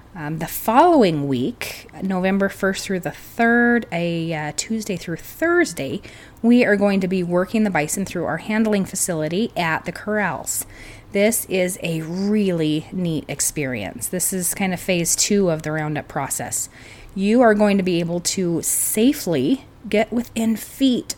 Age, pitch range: 30-49, 150-210 Hz